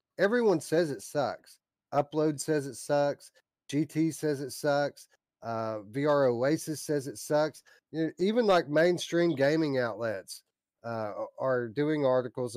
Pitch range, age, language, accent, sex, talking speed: 115-170 Hz, 40-59, English, American, male, 130 wpm